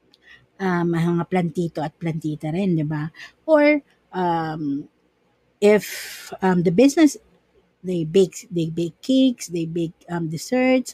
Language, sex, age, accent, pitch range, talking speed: Filipino, female, 50-69, native, 170-235 Hz, 130 wpm